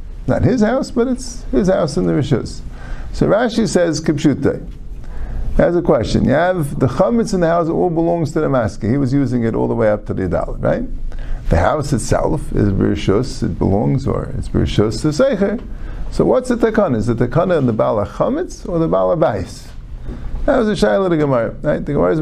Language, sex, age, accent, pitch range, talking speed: English, male, 50-69, American, 105-170 Hz, 210 wpm